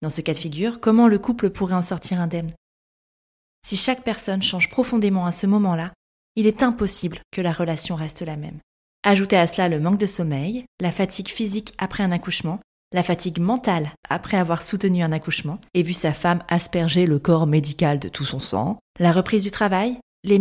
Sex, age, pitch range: female, 20-39, 175-230 Hz